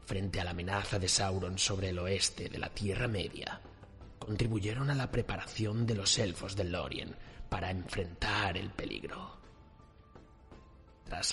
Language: Spanish